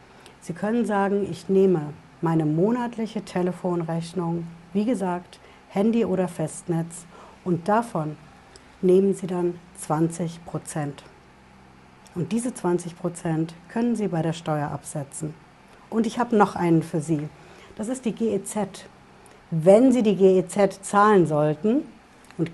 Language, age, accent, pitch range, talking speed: German, 60-79, German, 165-205 Hz, 130 wpm